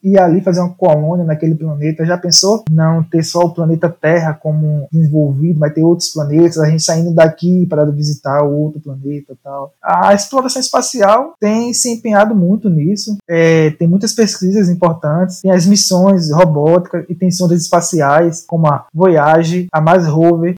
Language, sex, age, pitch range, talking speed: Portuguese, male, 20-39, 150-195 Hz, 170 wpm